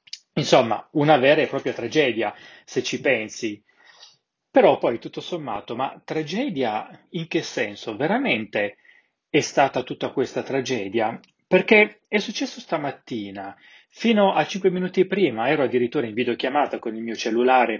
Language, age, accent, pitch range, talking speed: Italian, 30-49, native, 115-185 Hz, 140 wpm